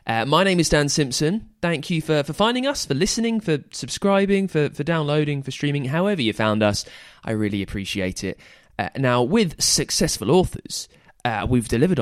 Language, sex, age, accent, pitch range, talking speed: English, male, 20-39, British, 115-150 Hz, 185 wpm